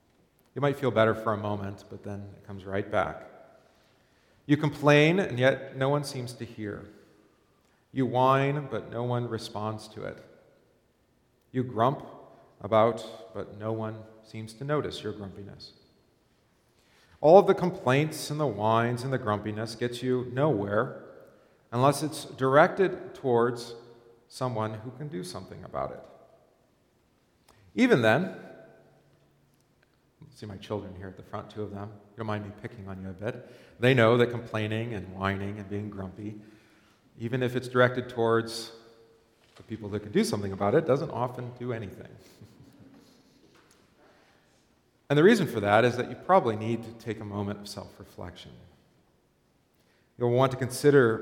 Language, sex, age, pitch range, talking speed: English, male, 40-59, 105-130 Hz, 155 wpm